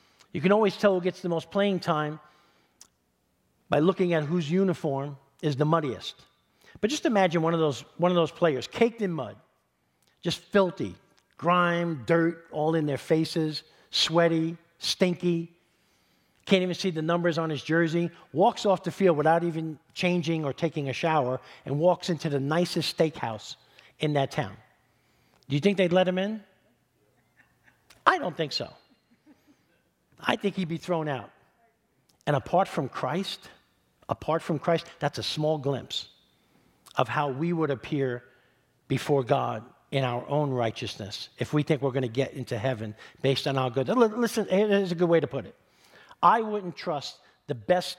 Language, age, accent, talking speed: English, 50-69, American, 165 wpm